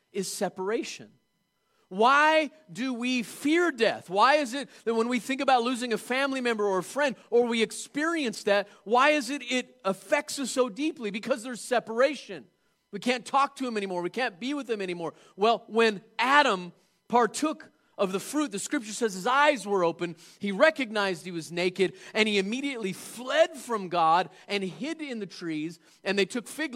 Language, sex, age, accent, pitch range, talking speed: English, male, 30-49, American, 185-250 Hz, 185 wpm